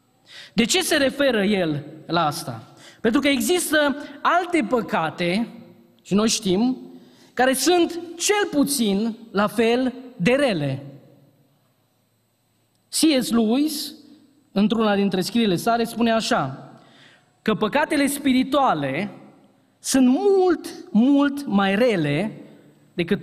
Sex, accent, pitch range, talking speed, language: male, native, 160-255 Hz, 105 wpm, Romanian